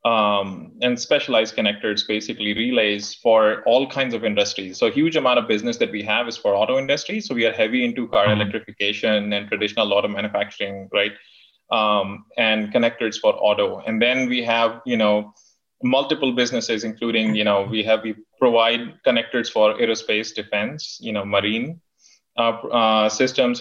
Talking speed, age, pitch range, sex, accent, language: 165 wpm, 20-39, 105-115 Hz, male, Indian, English